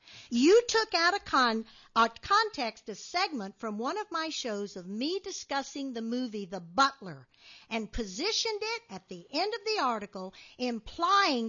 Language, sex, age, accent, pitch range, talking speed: English, female, 50-69, American, 215-325 Hz, 165 wpm